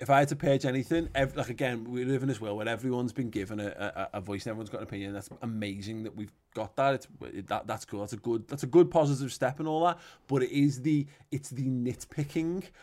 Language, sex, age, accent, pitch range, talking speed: English, male, 20-39, British, 115-135 Hz, 260 wpm